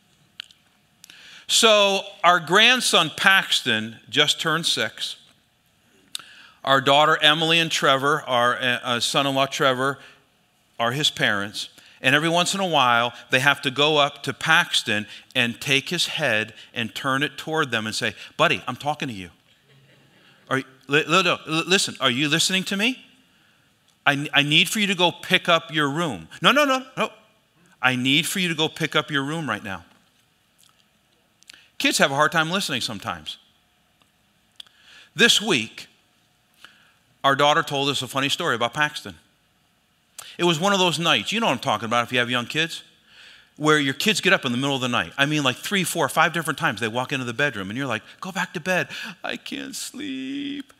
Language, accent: English, American